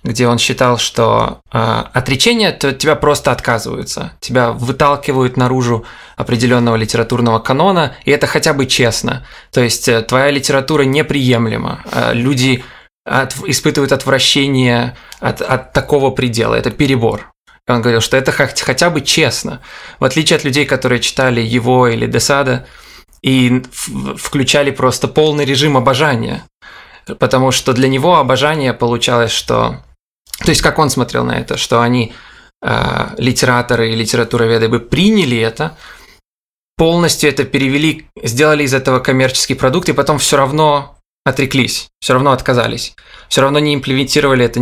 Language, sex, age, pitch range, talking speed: Russian, male, 20-39, 120-140 Hz, 135 wpm